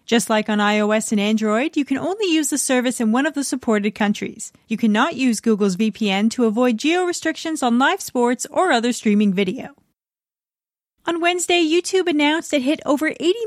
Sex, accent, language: female, American, English